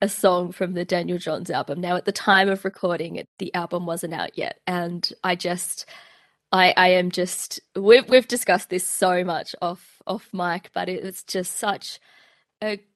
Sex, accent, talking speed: female, Australian, 185 wpm